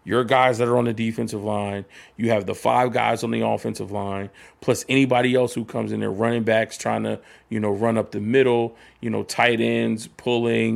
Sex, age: male, 30-49